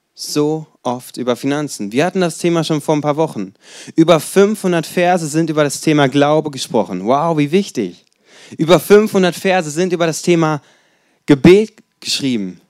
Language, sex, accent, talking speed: German, male, German, 160 wpm